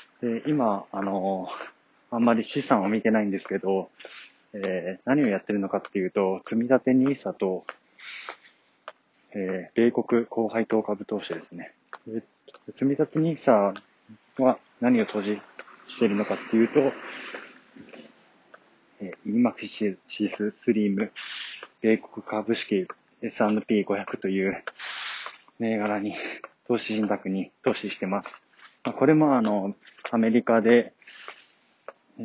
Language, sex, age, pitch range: Japanese, male, 20-39, 100-120 Hz